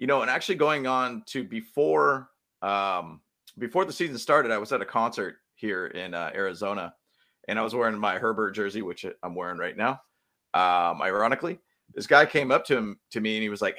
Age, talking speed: 30-49, 210 wpm